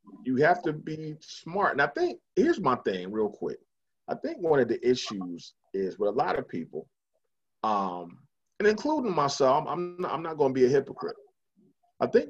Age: 30-49